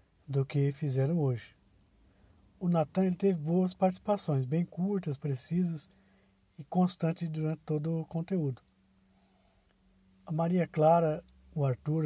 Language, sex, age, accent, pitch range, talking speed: Portuguese, male, 50-69, Brazilian, 125-165 Hz, 115 wpm